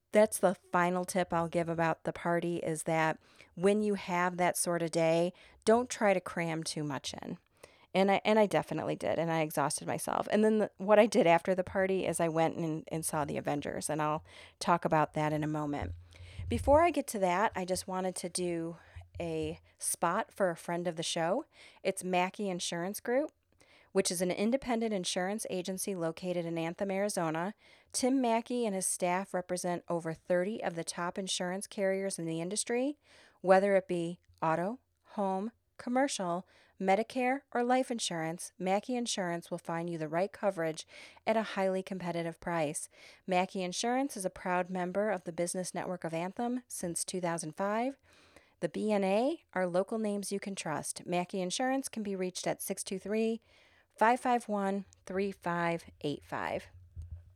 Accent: American